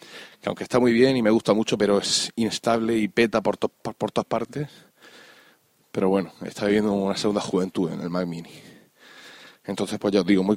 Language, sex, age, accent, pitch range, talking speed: Spanish, male, 20-39, Spanish, 100-115 Hz, 205 wpm